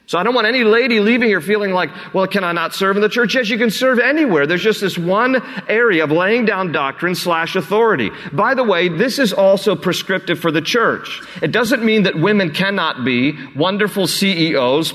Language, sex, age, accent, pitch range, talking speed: English, male, 40-59, American, 135-195 Hz, 215 wpm